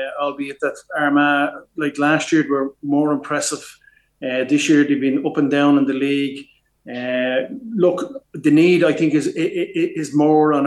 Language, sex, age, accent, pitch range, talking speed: English, male, 30-49, Irish, 140-155 Hz, 170 wpm